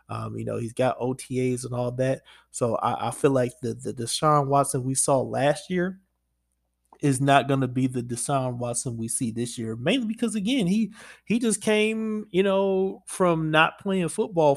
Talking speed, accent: 195 wpm, American